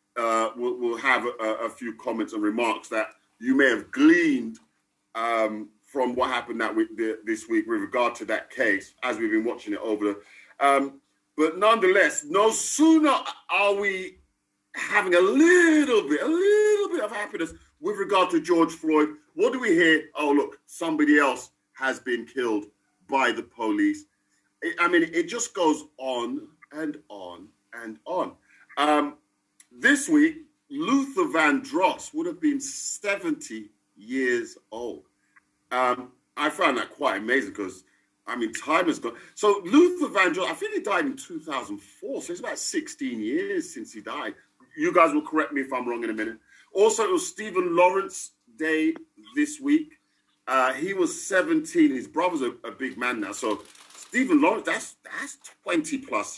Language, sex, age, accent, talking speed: English, male, 50-69, British, 165 wpm